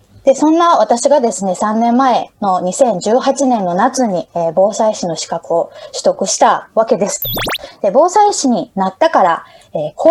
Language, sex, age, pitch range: Japanese, female, 20-39, 190-305 Hz